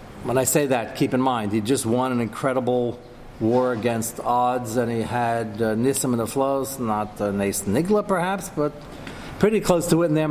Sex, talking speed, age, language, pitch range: male, 205 wpm, 40-59, English, 115-150 Hz